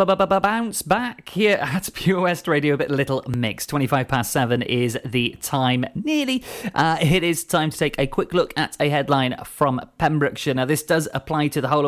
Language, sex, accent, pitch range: English, male, British, 125-155 Hz